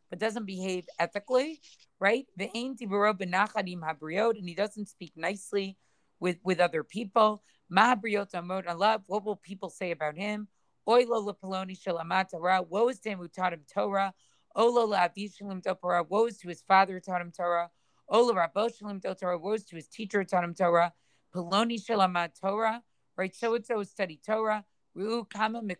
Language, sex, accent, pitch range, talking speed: English, female, American, 175-210 Hz, 160 wpm